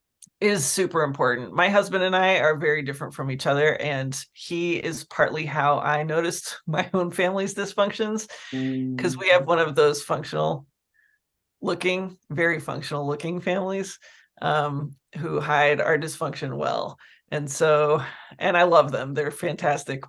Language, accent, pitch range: English, American, 150-195 Hz